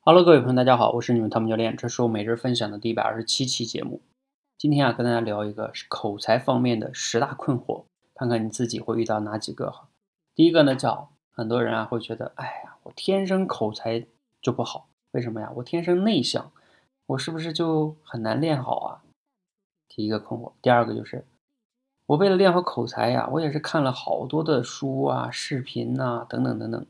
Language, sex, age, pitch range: Chinese, male, 20-39, 115-165 Hz